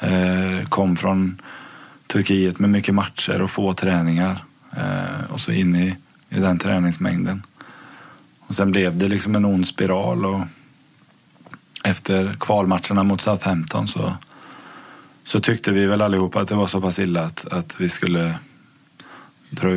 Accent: native